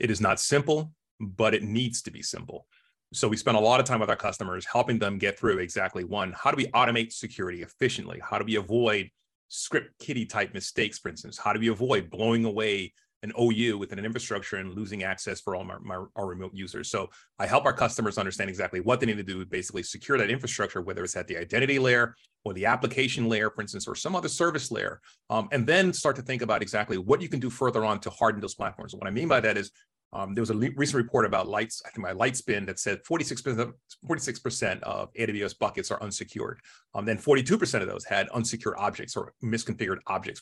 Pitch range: 105-125 Hz